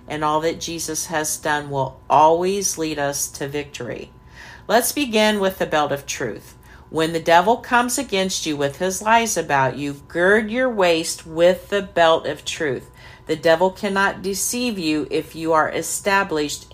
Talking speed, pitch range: 170 wpm, 150-190 Hz